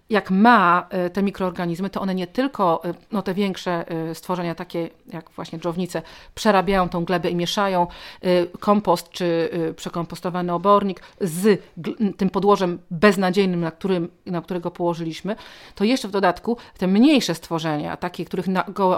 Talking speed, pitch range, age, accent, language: 140 wpm, 175-210 Hz, 40-59, native, Polish